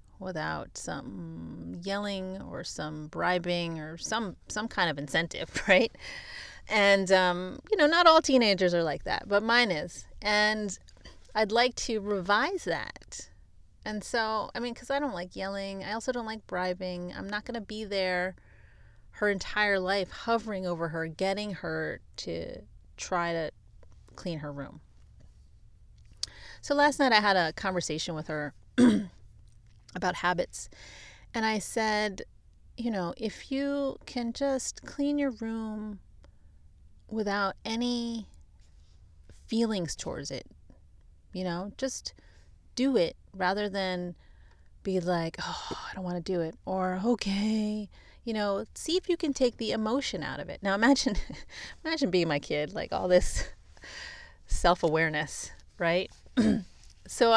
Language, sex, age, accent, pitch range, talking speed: English, female, 30-49, American, 160-225 Hz, 145 wpm